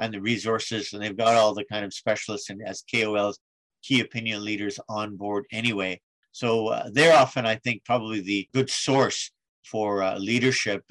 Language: English